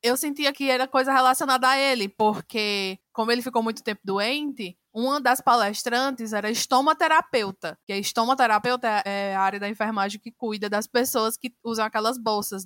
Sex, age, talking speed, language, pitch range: female, 20-39, 170 wpm, Portuguese, 210-260 Hz